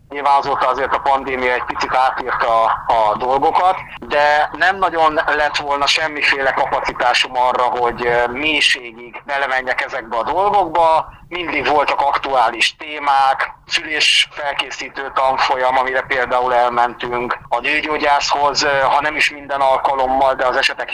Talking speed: 125 wpm